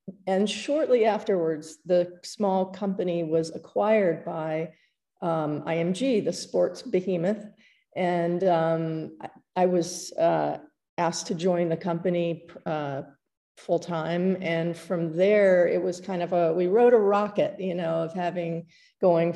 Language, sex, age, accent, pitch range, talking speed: English, female, 40-59, American, 165-195 Hz, 140 wpm